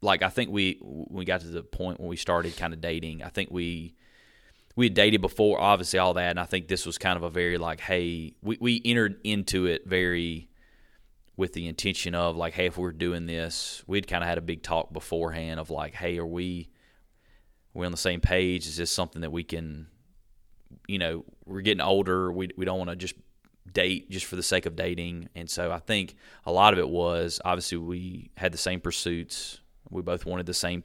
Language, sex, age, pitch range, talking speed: English, male, 30-49, 85-90 Hz, 225 wpm